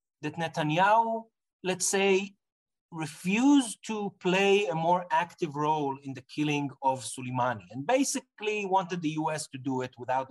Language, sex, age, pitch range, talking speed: English, male, 30-49, 140-185 Hz, 145 wpm